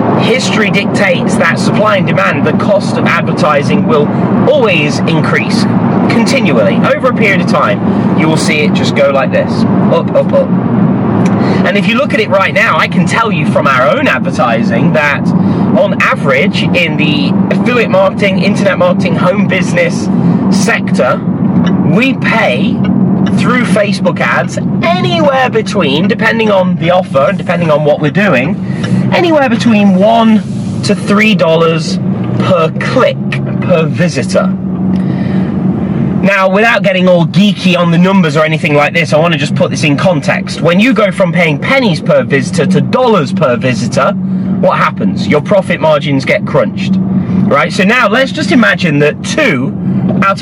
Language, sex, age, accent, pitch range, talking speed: English, male, 30-49, British, 180-200 Hz, 155 wpm